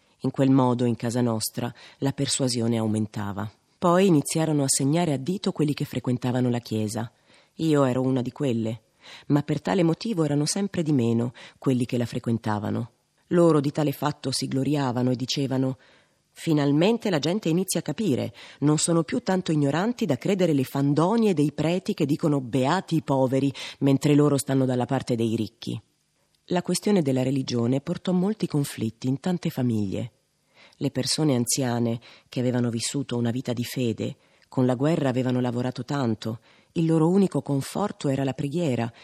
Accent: native